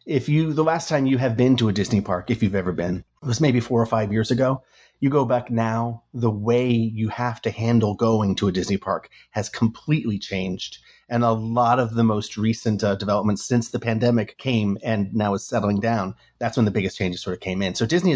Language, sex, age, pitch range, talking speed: English, male, 30-49, 105-125 Hz, 230 wpm